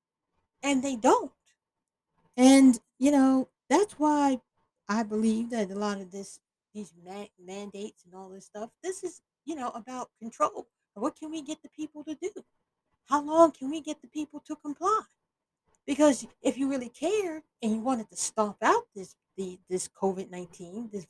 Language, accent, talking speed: English, American, 175 wpm